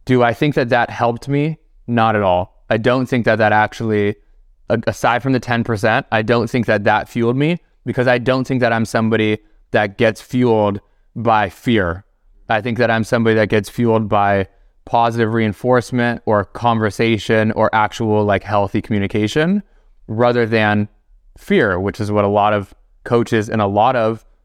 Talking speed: 175 wpm